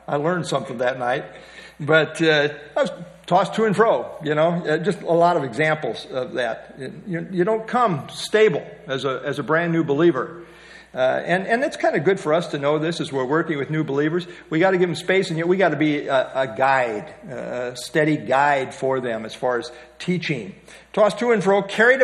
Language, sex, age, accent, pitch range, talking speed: English, male, 50-69, American, 150-190 Hz, 225 wpm